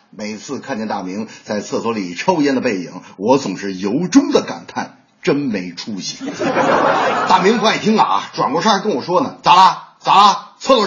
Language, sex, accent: Chinese, male, native